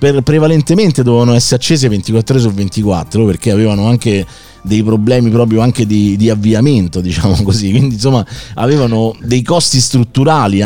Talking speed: 145 wpm